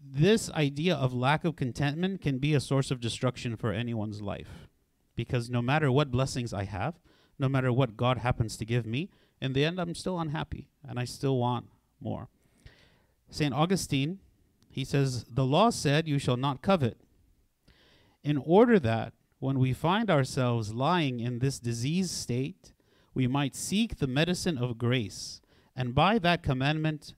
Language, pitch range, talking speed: English, 125-155 Hz, 165 wpm